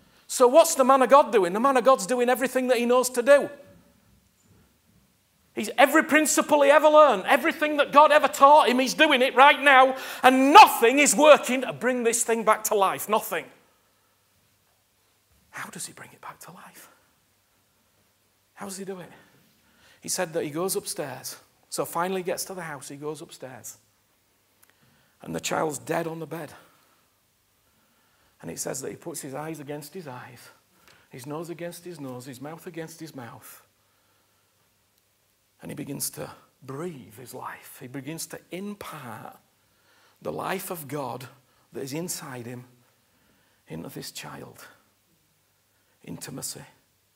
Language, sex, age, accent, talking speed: English, male, 40-59, British, 160 wpm